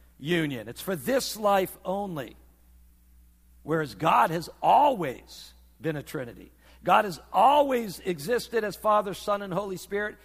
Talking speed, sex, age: 135 wpm, male, 60-79